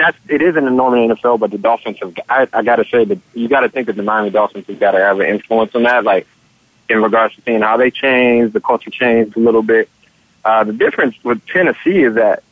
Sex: male